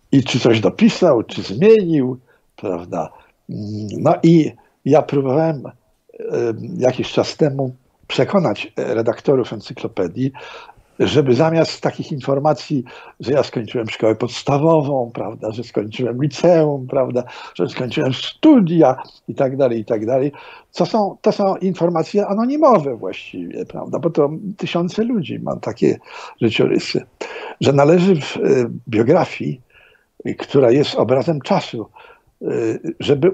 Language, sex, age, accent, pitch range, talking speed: Polish, male, 60-79, native, 125-170 Hz, 110 wpm